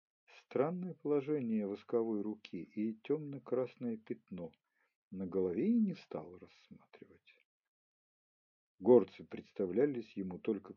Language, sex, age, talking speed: Ukrainian, male, 50-69, 95 wpm